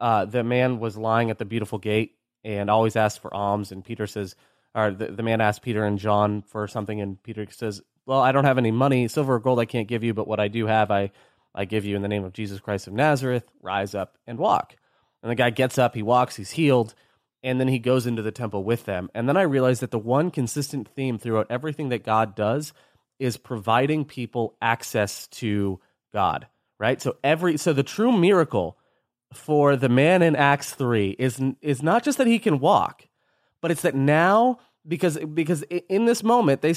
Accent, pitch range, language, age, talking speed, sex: American, 115-155 Hz, English, 30-49, 215 wpm, male